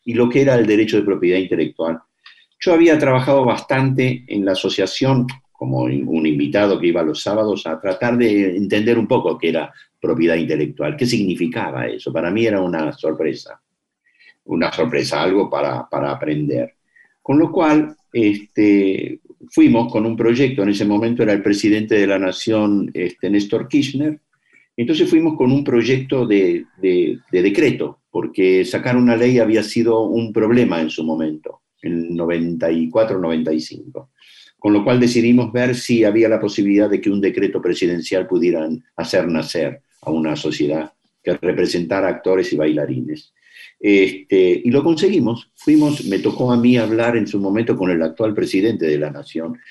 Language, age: Spanish, 50-69